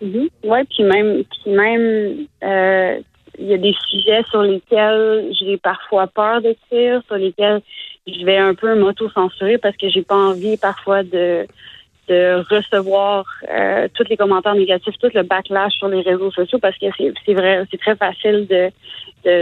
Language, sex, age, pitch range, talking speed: French, female, 30-49, 180-205 Hz, 175 wpm